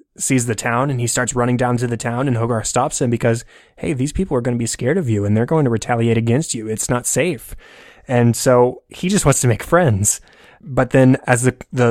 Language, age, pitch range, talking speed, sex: English, 20-39, 110-125 Hz, 245 wpm, male